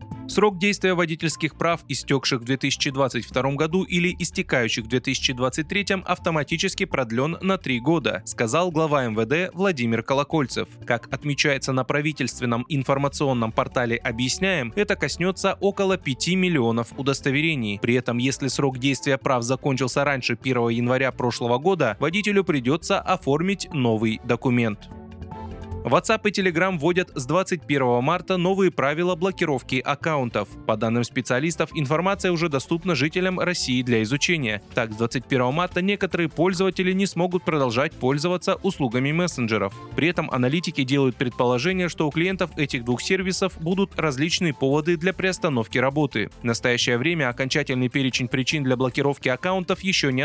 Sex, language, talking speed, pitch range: male, Russian, 135 wpm, 125-180 Hz